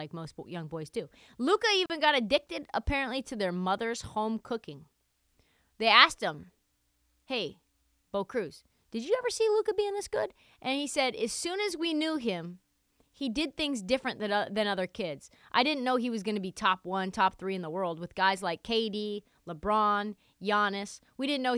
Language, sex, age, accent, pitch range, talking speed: English, female, 30-49, American, 185-255 Hz, 195 wpm